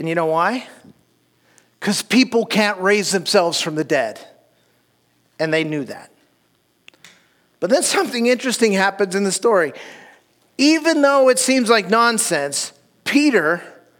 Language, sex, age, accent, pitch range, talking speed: English, male, 40-59, American, 155-225 Hz, 135 wpm